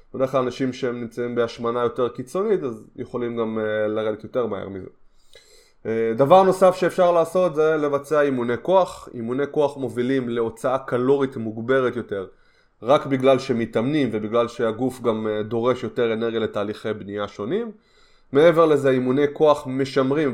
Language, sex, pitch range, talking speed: Hebrew, male, 115-150 Hz, 140 wpm